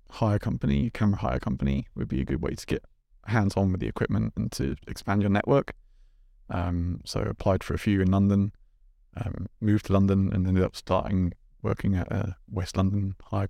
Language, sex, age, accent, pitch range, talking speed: English, male, 20-39, British, 90-100 Hz, 195 wpm